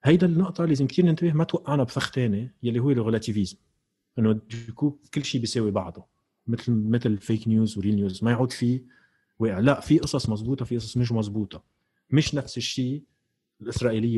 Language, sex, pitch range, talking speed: Arabic, male, 105-130 Hz, 165 wpm